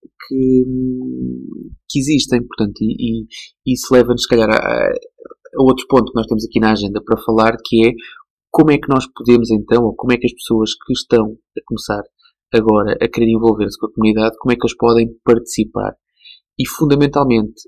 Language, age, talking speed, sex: Portuguese, 20-39, 185 wpm, male